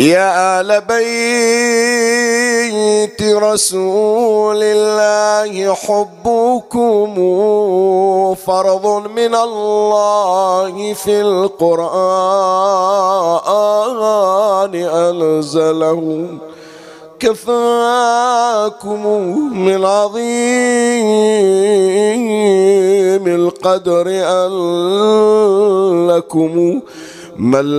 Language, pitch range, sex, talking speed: Arabic, 180-215 Hz, male, 45 wpm